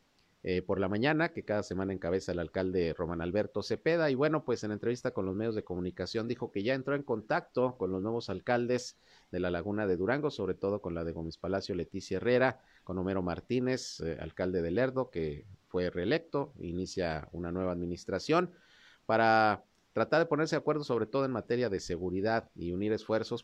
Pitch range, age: 90-120 Hz, 40-59